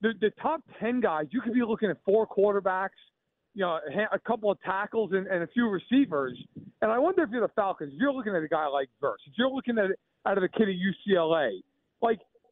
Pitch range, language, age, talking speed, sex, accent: 185-245 Hz, English, 40-59, 250 wpm, male, American